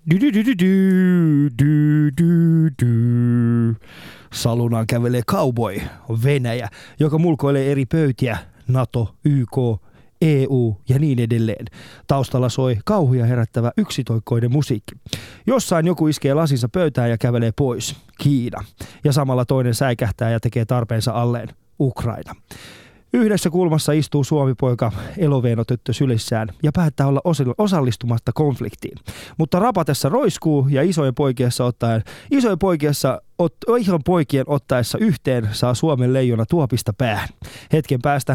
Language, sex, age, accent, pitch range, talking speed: Finnish, male, 20-39, native, 120-160 Hz, 110 wpm